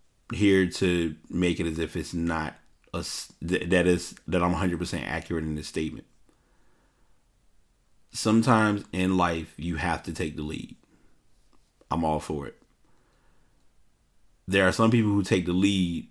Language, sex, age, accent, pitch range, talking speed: English, male, 30-49, American, 80-95 Hz, 140 wpm